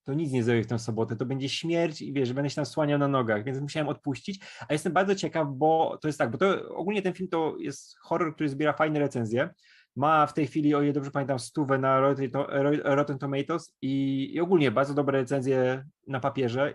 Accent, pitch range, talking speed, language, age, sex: native, 135-165 Hz, 215 wpm, Polish, 20-39, male